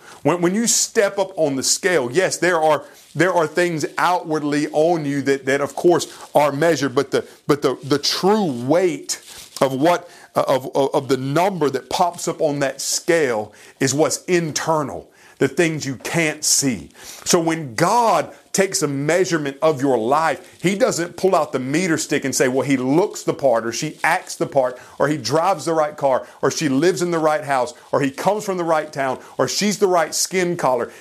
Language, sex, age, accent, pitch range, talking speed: English, male, 40-59, American, 140-180 Hz, 200 wpm